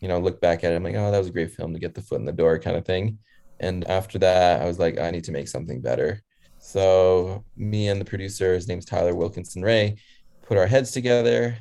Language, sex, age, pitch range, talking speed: English, male, 20-39, 90-105 Hz, 260 wpm